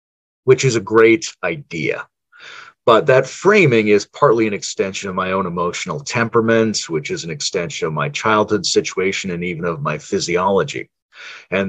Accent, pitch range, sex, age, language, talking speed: American, 95-135 Hz, male, 40-59, English, 160 wpm